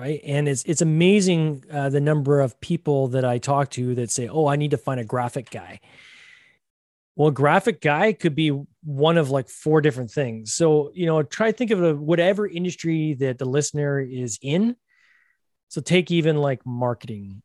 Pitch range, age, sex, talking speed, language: 125-155 Hz, 20-39, male, 195 wpm, English